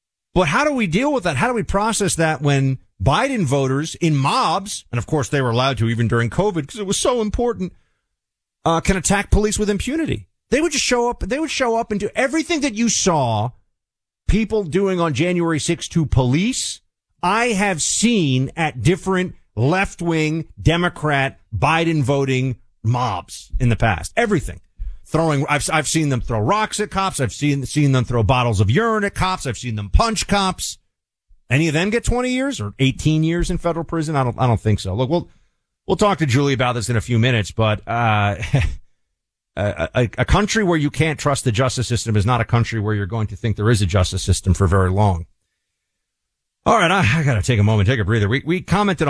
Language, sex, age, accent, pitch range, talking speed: English, male, 40-59, American, 110-175 Hz, 210 wpm